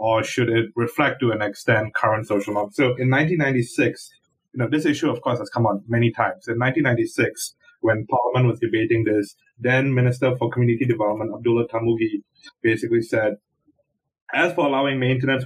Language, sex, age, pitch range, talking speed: English, male, 30-49, 110-135 Hz, 170 wpm